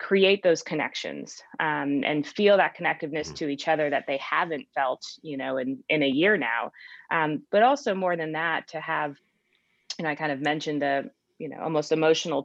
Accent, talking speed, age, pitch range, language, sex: American, 195 wpm, 30-49, 145-165 Hz, English, female